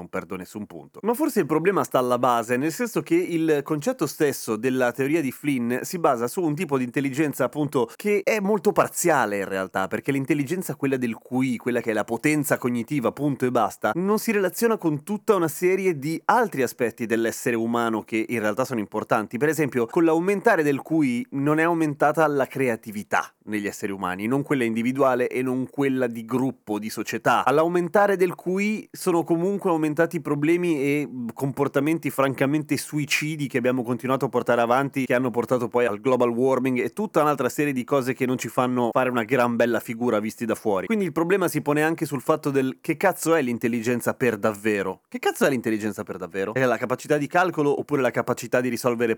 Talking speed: 200 wpm